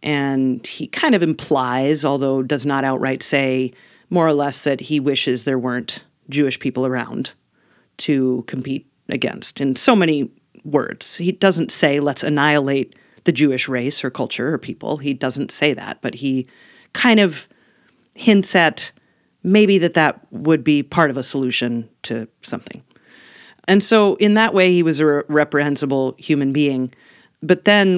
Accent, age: American, 40-59